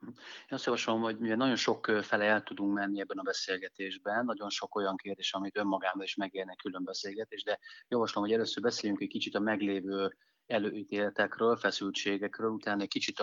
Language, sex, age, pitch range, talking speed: Hungarian, male, 30-49, 95-105 Hz, 170 wpm